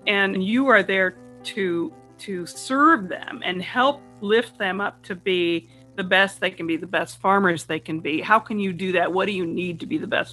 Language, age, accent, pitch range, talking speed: English, 40-59, American, 170-215 Hz, 225 wpm